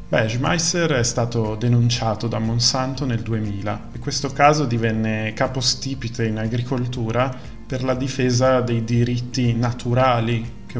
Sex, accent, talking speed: male, native, 130 wpm